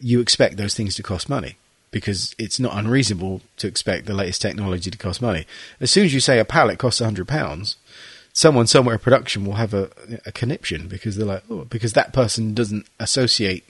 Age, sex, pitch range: 30-49, male, 105-135 Hz